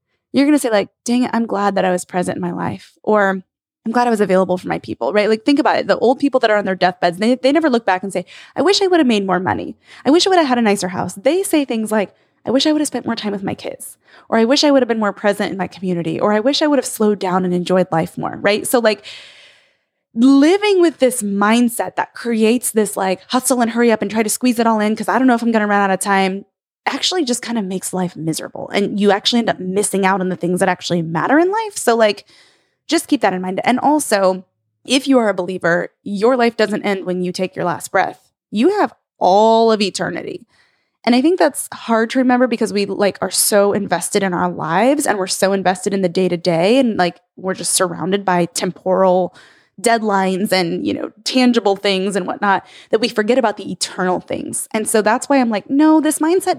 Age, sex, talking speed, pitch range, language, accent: 20-39, female, 255 wpm, 185-250 Hz, English, American